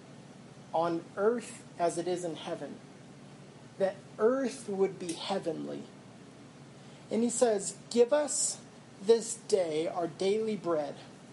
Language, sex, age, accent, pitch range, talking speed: English, male, 30-49, American, 175-220 Hz, 115 wpm